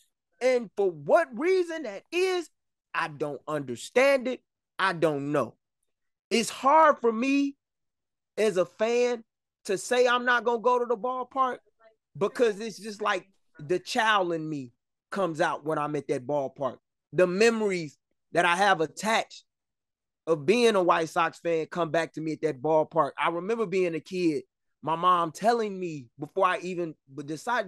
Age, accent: 20-39, American